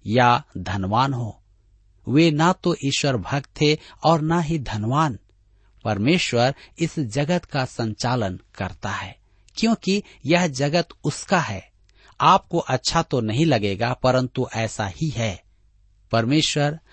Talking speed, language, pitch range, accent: 125 wpm, Hindi, 105-155 Hz, native